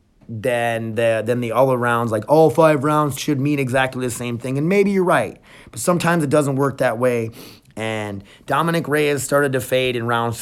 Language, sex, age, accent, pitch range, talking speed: English, male, 30-49, American, 115-145 Hz, 195 wpm